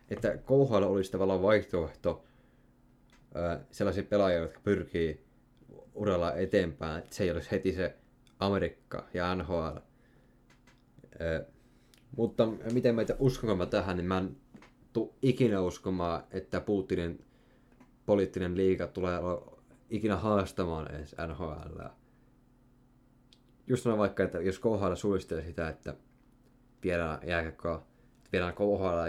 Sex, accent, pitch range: male, native, 90-125 Hz